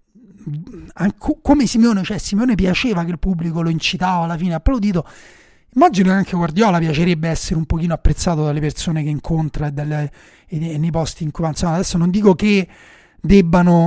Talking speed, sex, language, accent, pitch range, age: 175 wpm, male, Italian, native, 150-185 Hz, 30-49